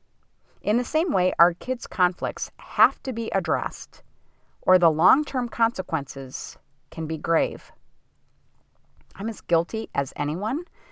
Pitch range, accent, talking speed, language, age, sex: 160-220 Hz, American, 125 wpm, English, 40-59, female